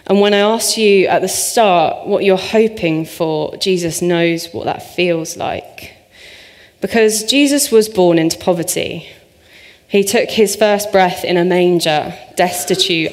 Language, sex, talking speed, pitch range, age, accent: English, female, 150 wpm, 165-200 Hz, 20-39, British